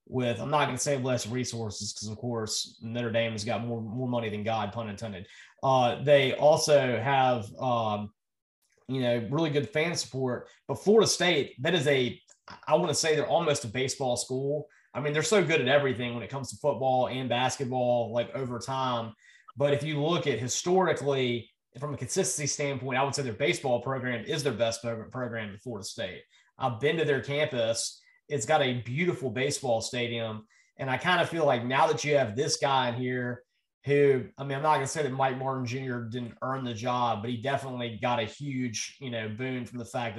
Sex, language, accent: male, English, American